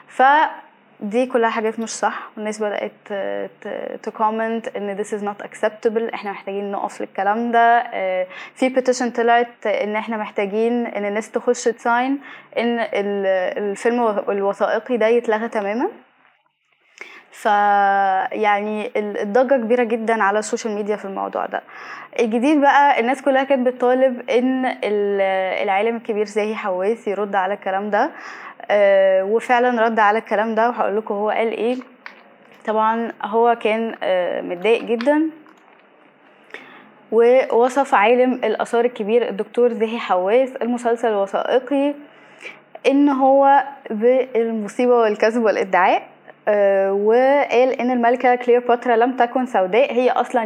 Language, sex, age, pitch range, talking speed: Arabic, female, 10-29, 210-250 Hz, 120 wpm